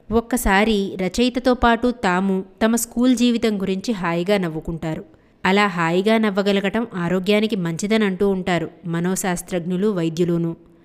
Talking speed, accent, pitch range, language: 105 wpm, native, 185-230 Hz, Telugu